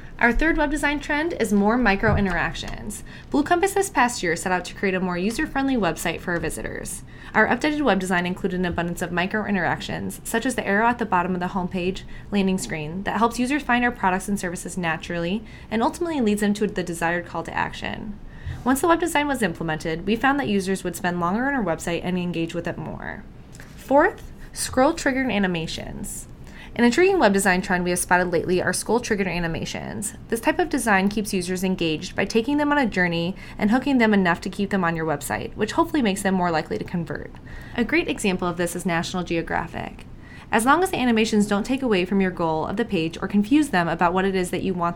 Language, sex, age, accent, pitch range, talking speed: English, female, 20-39, American, 180-240 Hz, 220 wpm